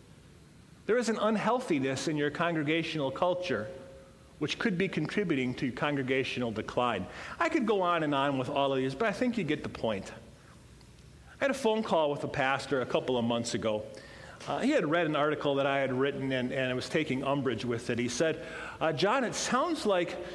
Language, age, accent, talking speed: English, 40-59, American, 205 wpm